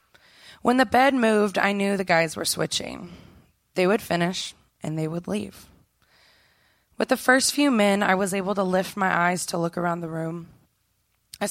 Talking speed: 180 wpm